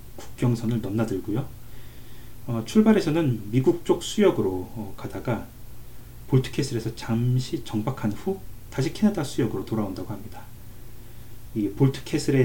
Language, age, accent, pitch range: Korean, 30-49, native, 110-130 Hz